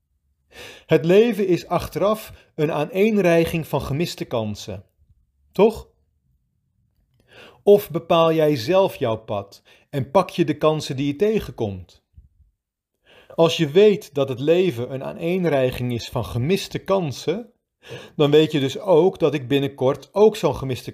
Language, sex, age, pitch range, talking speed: Dutch, male, 40-59, 115-170 Hz, 135 wpm